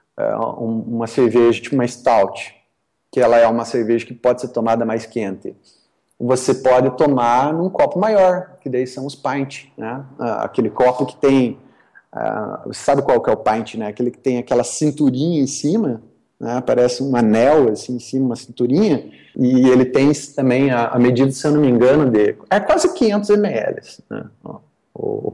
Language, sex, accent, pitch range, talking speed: Portuguese, male, Brazilian, 115-145 Hz, 180 wpm